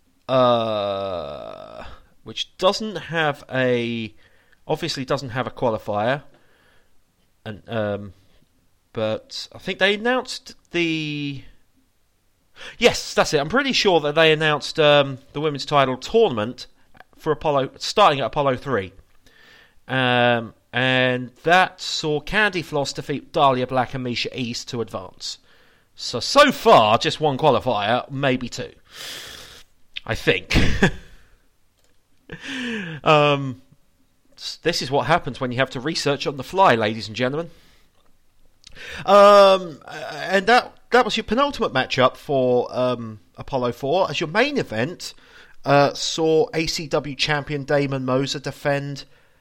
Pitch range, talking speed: 120-165 Hz, 125 wpm